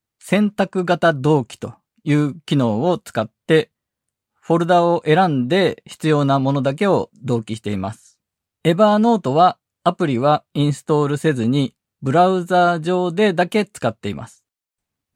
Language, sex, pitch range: Japanese, male, 130-180 Hz